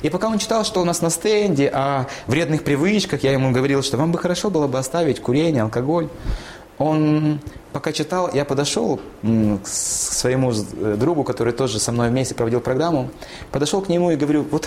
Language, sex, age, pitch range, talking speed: Russian, male, 20-39, 115-170 Hz, 185 wpm